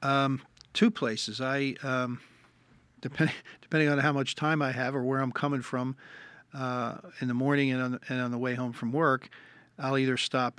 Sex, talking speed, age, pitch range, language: male, 195 wpm, 50-69, 115-130 Hz, English